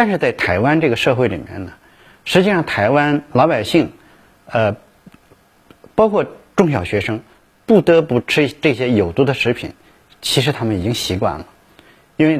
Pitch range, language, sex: 115-155 Hz, Chinese, male